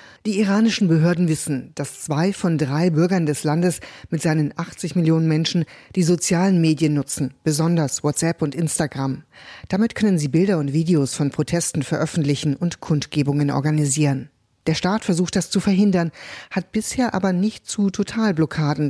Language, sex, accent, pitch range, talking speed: German, female, German, 150-175 Hz, 150 wpm